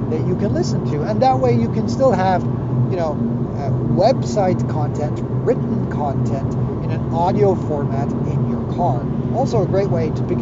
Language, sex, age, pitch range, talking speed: English, male, 40-59, 120-130 Hz, 185 wpm